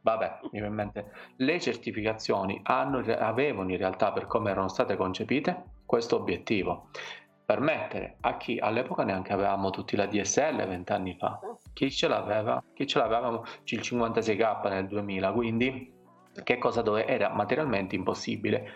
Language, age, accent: Italian, 30-49, native